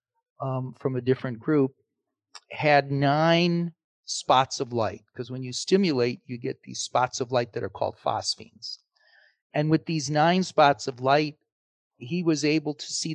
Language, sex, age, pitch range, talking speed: English, male, 40-59, 125-160 Hz, 160 wpm